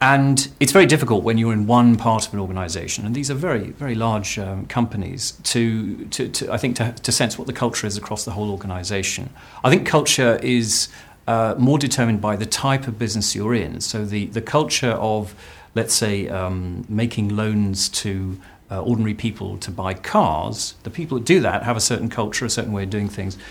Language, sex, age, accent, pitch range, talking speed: English, male, 40-59, British, 105-125 Hz, 210 wpm